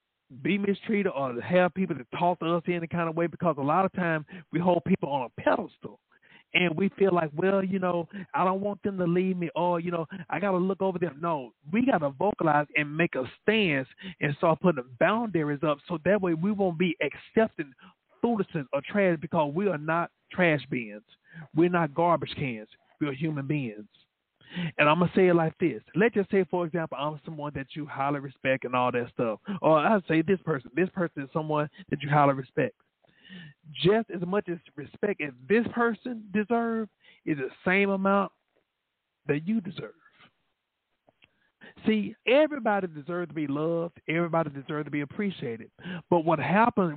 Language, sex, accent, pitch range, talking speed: English, male, American, 150-195 Hz, 190 wpm